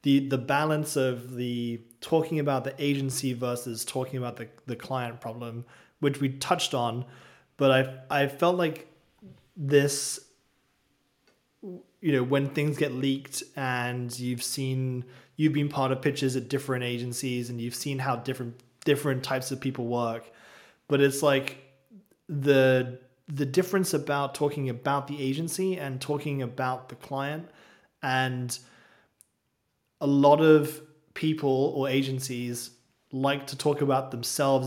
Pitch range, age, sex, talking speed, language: 125-145 Hz, 20-39, male, 140 wpm, English